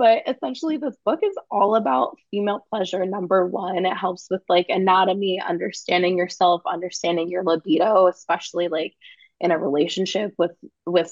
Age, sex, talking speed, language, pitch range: 20-39, female, 150 wpm, English, 175-205 Hz